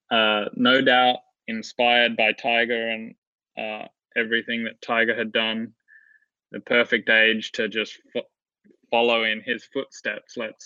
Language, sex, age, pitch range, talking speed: English, male, 20-39, 110-120 Hz, 130 wpm